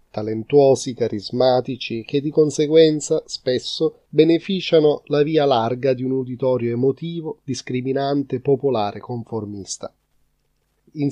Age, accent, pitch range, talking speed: 30-49, native, 125-150 Hz, 95 wpm